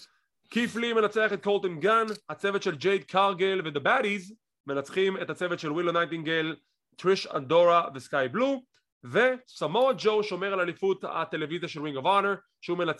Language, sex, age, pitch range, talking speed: English, male, 30-49, 155-205 Hz, 135 wpm